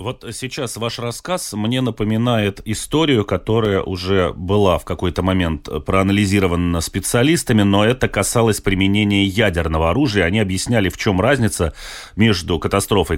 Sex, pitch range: male, 90-115 Hz